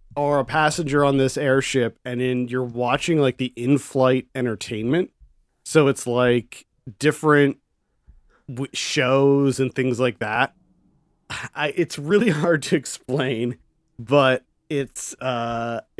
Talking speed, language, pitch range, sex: 125 wpm, English, 110-140 Hz, male